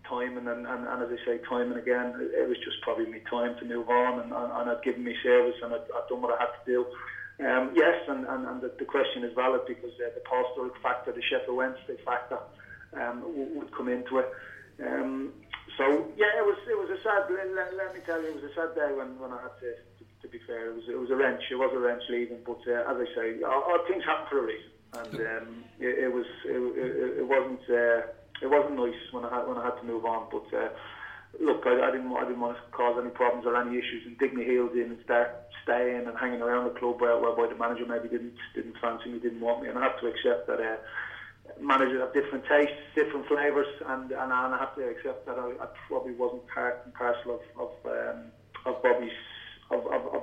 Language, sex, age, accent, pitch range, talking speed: English, male, 30-49, British, 120-145 Hz, 245 wpm